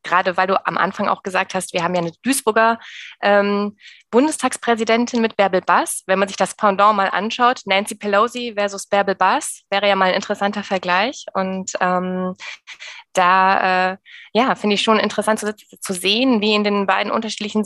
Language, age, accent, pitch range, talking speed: German, 20-39, German, 190-225 Hz, 175 wpm